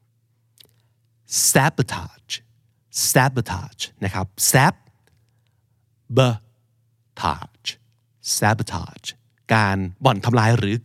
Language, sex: Thai, male